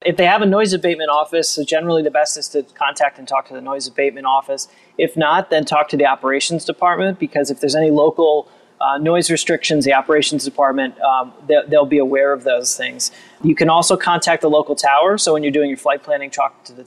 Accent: American